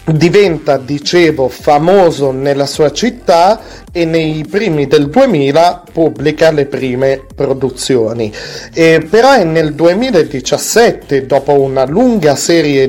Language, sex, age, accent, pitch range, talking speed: Italian, male, 30-49, native, 125-150 Hz, 110 wpm